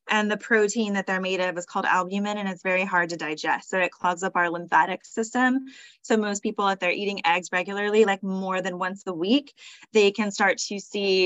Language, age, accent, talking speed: English, 10-29, American, 225 wpm